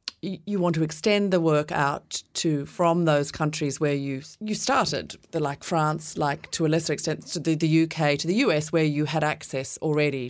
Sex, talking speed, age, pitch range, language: female, 200 wpm, 30-49, 140-165 Hz, English